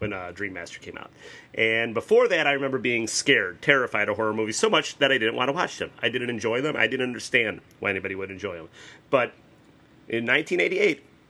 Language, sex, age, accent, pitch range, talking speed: English, male, 30-49, American, 110-145 Hz, 220 wpm